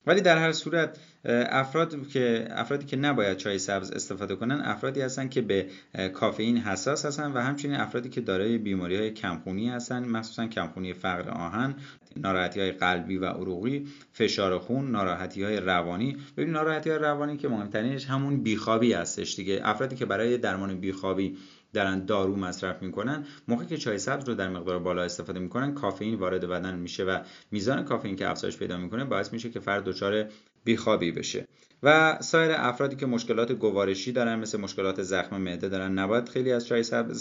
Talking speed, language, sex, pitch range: 170 wpm, Persian, male, 95-125 Hz